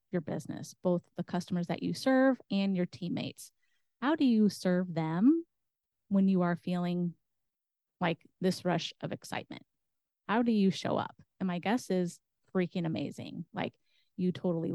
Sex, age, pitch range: female, 30-49, 175-200 Hz